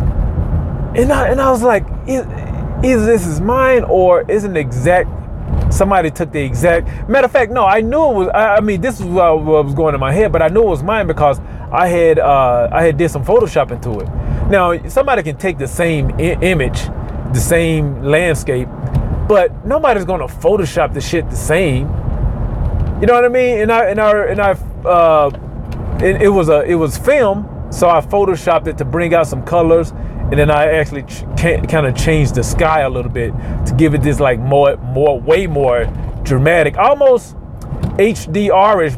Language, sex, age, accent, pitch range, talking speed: English, male, 30-49, American, 130-185 Hz, 200 wpm